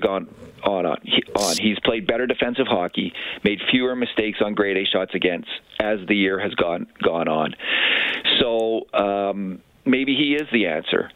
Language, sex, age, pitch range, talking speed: English, male, 40-59, 100-120 Hz, 165 wpm